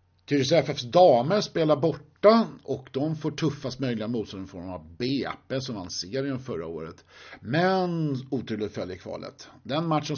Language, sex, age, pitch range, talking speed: Swedish, male, 50-69, 105-145 Hz, 165 wpm